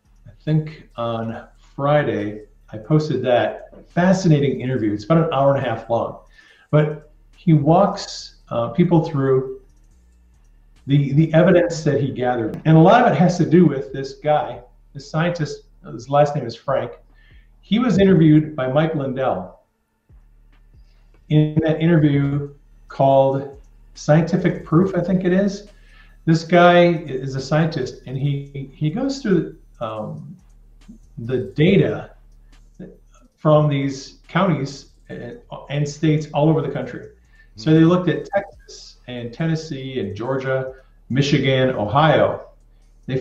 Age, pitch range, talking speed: 40-59, 120-160 Hz, 135 wpm